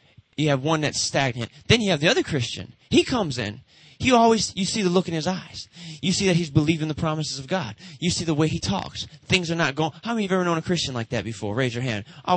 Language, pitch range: English, 135-180 Hz